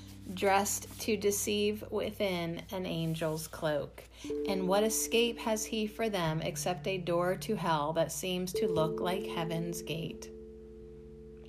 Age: 30-49